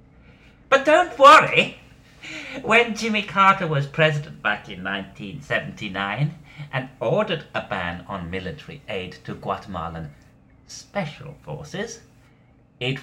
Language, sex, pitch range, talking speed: English, male, 115-155 Hz, 105 wpm